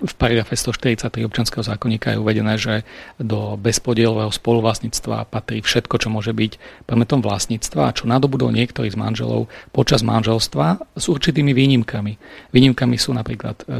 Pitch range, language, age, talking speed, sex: 110-130 Hz, Slovak, 40-59, 135 wpm, male